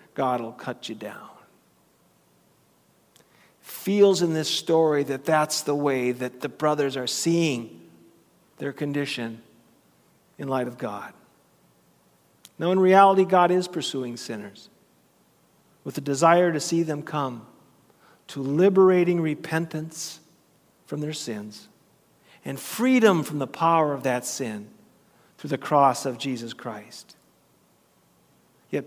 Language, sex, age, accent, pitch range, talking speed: English, male, 50-69, American, 130-170 Hz, 120 wpm